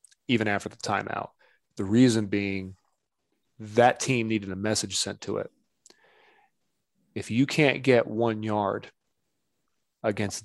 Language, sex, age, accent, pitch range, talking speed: English, male, 30-49, American, 105-135 Hz, 125 wpm